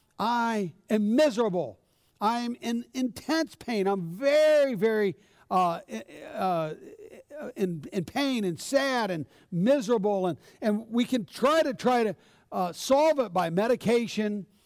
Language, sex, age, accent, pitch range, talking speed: English, male, 60-79, American, 200-270 Hz, 135 wpm